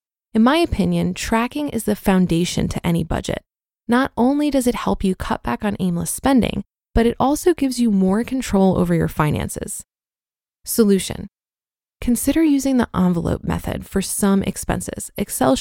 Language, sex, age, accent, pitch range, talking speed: English, female, 20-39, American, 195-255 Hz, 160 wpm